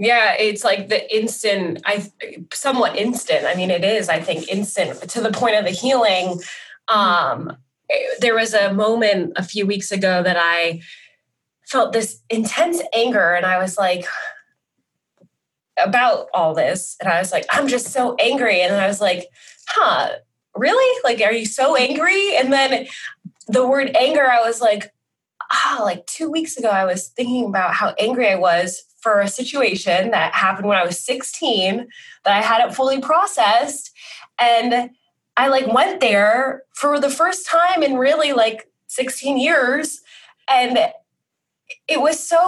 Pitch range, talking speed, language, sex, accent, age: 205-290 Hz, 165 wpm, English, female, American, 20-39